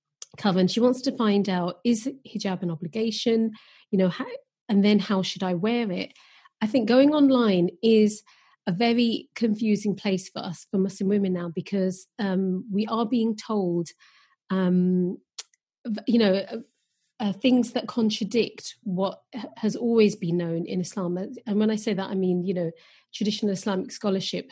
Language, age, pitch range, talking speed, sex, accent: English, 40-59, 185-230 Hz, 160 wpm, female, British